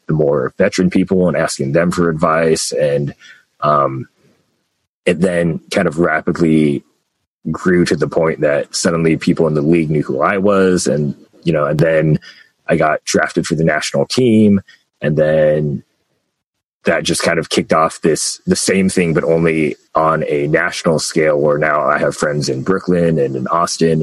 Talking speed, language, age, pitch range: 175 wpm, English, 30-49, 80-90 Hz